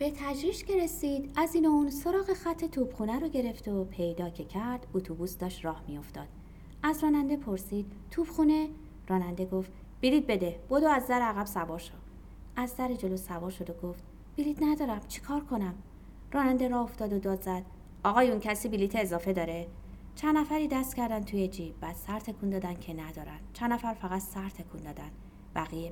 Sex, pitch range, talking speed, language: female, 170-255 Hz, 170 wpm, Persian